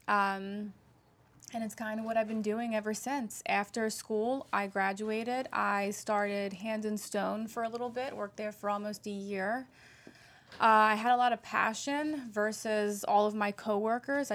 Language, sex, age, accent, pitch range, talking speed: English, female, 20-39, American, 200-230 Hz, 175 wpm